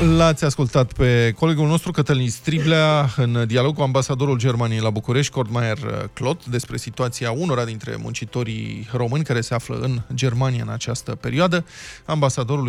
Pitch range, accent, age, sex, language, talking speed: 120-165 Hz, native, 20-39, male, Romanian, 145 wpm